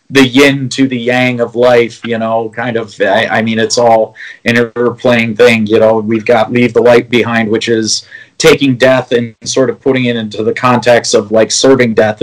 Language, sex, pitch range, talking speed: English, male, 115-145 Hz, 205 wpm